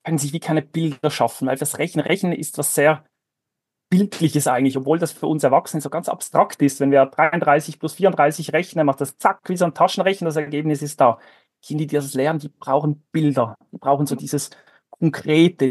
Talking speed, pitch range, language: 205 wpm, 140-170 Hz, German